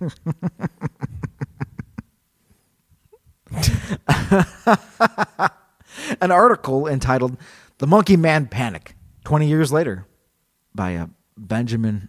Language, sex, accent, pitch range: English, male, American, 110-150 Hz